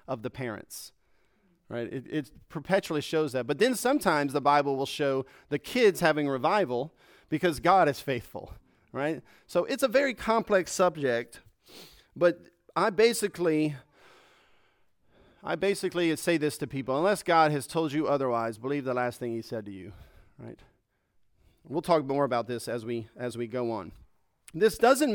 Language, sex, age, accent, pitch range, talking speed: English, male, 40-59, American, 120-160 Hz, 160 wpm